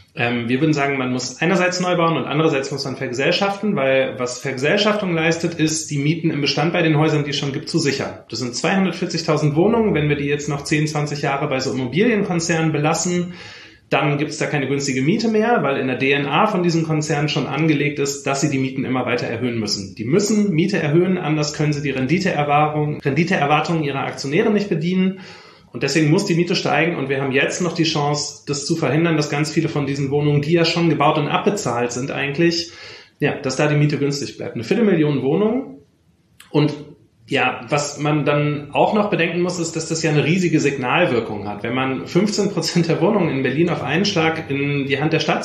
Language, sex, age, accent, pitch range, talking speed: German, male, 30-49, German, 130-165 Hz, 210 wpm